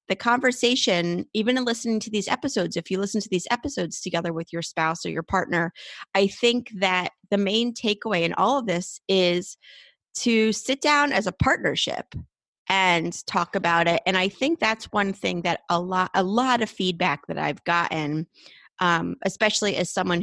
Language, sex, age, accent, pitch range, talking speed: English, female, 30-49, American, 175-215 Hz, 185 wpm